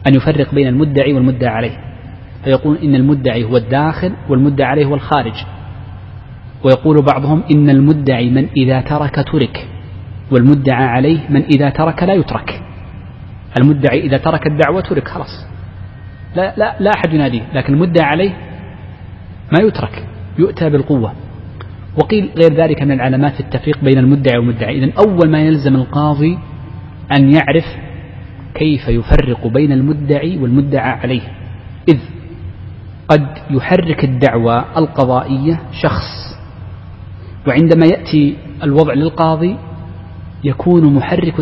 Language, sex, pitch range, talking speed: Arabic, male, 110-150 Hz, 120 wpm